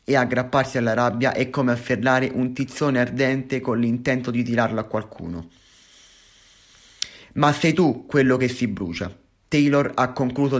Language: Italian